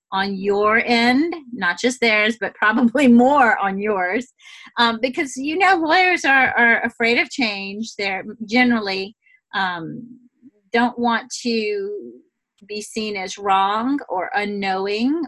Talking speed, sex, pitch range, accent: 130 wpm, female, 190-245 Hz, American